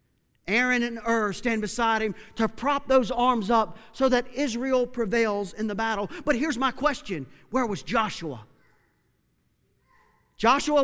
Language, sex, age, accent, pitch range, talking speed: English, male, 40-59, American, 210-260 Hz, 145 wpm